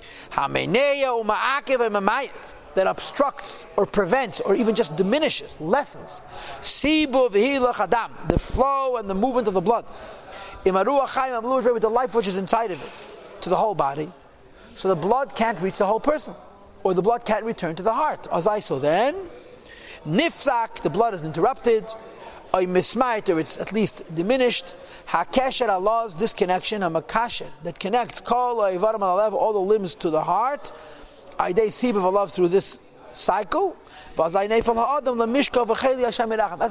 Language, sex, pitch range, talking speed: English, male, 195-255 Hz, 125 wpm